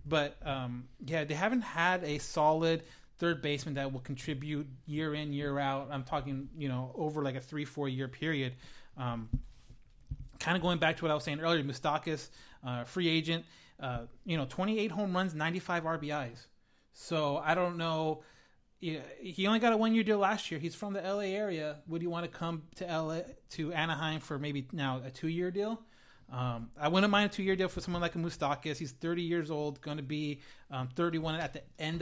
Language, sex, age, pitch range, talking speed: English, male, 30-49, 140-170 Hz, 200 wpm